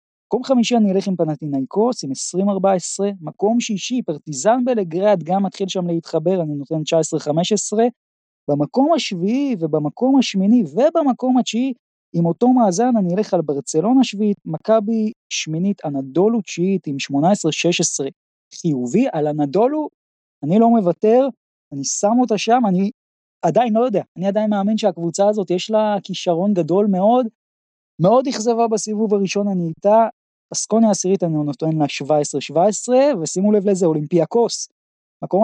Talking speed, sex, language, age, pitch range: 140 wpm, male, Hebrew, 20-39, 155-220 Hz